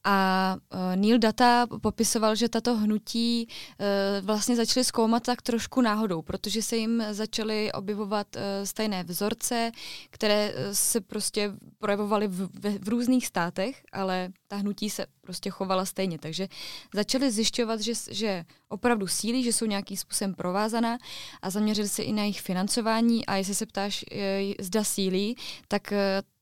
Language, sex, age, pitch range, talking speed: Czech, female, 20-39, 195-220 Hz, 150 wpm